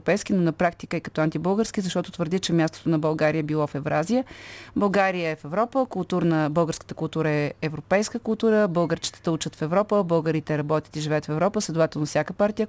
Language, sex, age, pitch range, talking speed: Bulgarian, female, 30-49, 155-200 Hz, 180 wpm